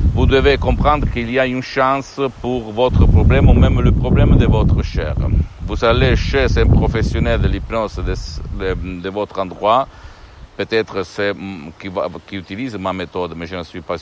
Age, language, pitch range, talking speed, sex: 60-79, Italian, 95-115 Hz, 175 wpm, male